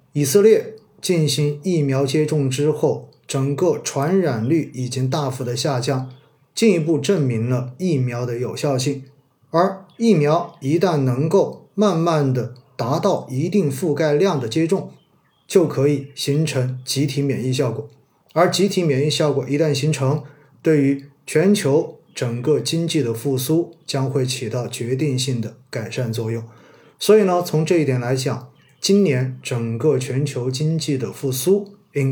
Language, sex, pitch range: Chinese, male, 125-155 Hz